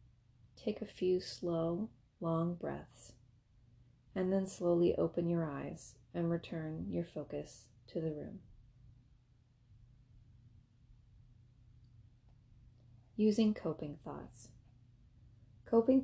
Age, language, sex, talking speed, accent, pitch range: 30-49, English, female, 85 wpm, American, 115-175 Hz